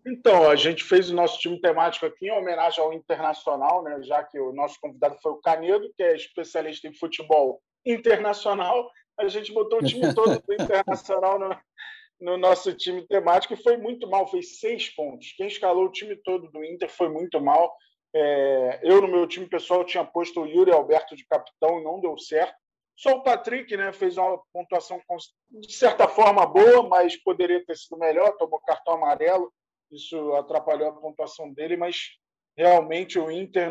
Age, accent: 20-39, Brazilian